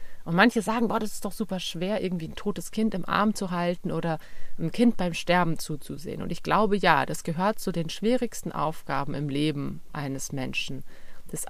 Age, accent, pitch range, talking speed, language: 30-49, German, 165-210 Hz, 200 wpm, German